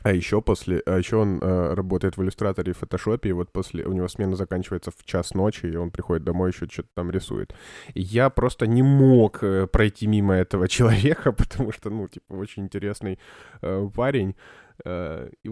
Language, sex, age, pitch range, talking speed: Russian, male, 20-39, 95-120 Hz, 185 wpm